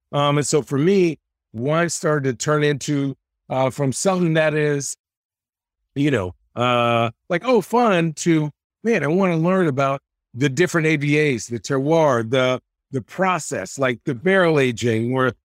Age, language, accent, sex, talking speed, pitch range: 50-69, English, American, male, 155 wpm, 130-165 Hz